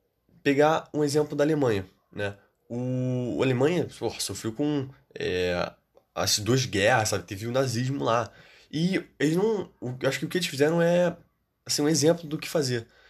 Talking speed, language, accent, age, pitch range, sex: 180 wpm, Portuguese, Brazilian, 20-39, 115-150 Hz, male